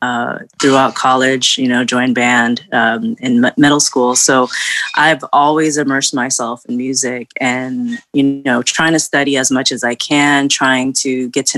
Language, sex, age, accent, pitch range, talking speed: English, female, 20-39, American, 125-150 Hz, 165 wpm